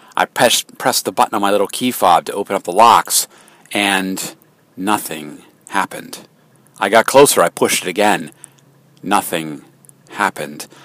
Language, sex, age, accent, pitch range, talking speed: English, male, 40-59, American, 95-125 Hz, 145 wpm